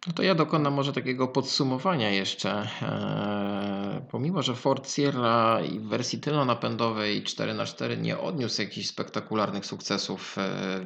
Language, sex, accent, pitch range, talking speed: Polish, male, native, 95-125 Hz, 135 wpm